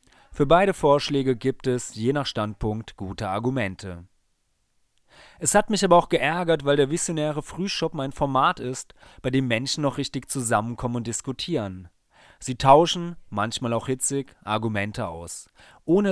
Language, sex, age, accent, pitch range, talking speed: German, male, 30-49, German, 110-145 Hz, 145 wpm